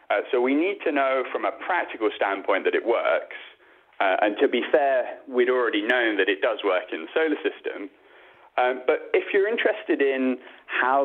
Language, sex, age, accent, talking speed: English, male, 30-49, British, 195 wpm